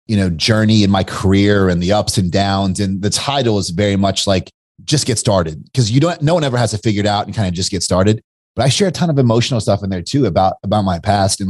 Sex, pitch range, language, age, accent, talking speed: male, 95-125 Hz, English, 30-49, American, 285 wpm